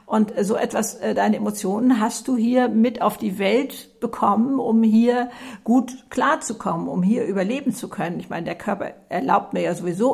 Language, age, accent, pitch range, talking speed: German, 50-69, German, 210-255 Hz, 180 wpm